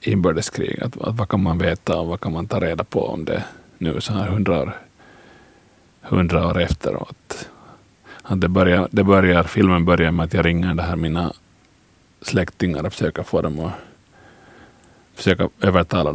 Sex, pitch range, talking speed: male, 85-100 Hz, 170 wpm